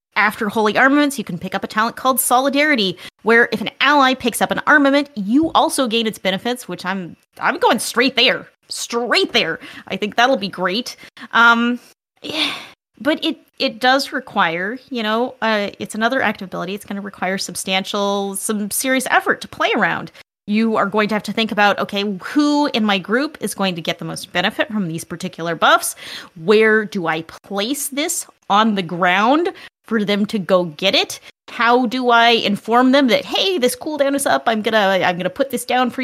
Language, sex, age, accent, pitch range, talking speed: English, female, 30-49, American, 195-260 Hz, 200 wpm